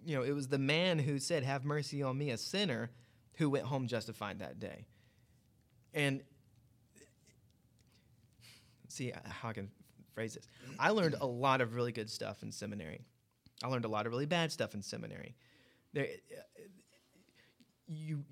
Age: 30-49